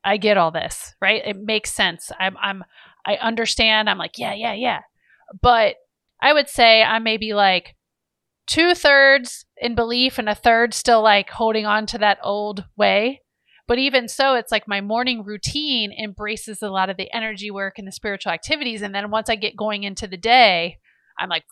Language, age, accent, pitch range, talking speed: English, 30-49, American, 195-240 Hz, 200 wpm